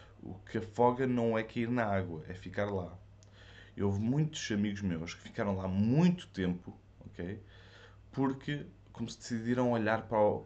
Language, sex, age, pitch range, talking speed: Portuguese, male, 20-39, 95-120 Hz, 165 wpm